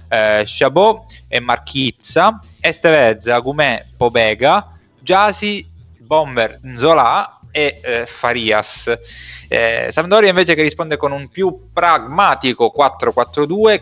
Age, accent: 20-39, native